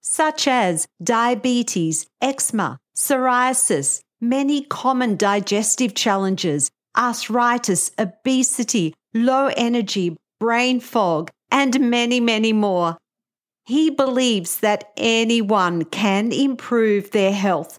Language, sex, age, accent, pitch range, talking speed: English, female, 50-69, Australian, 195-245 Hz, 90 wpm